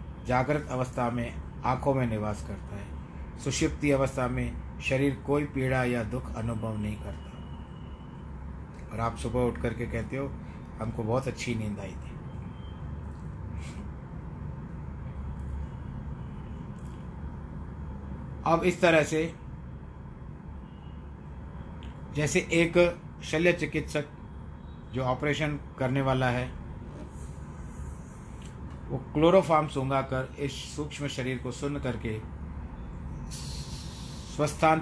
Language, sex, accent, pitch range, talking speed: Hindi, male, native, 80-125 Hz, 95 wpm